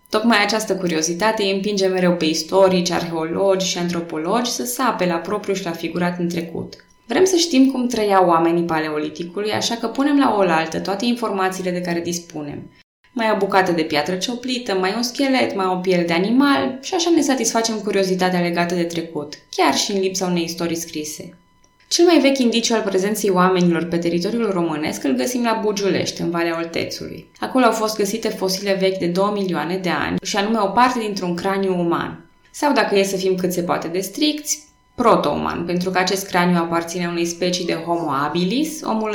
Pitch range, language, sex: 170-220 Hz, Romanian, female